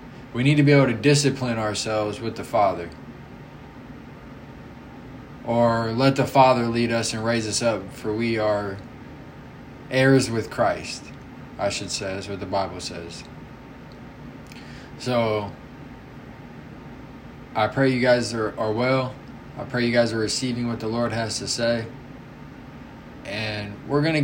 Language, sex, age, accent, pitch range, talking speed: English, male, 20-39, American, 115-130 Hz, 145 wpm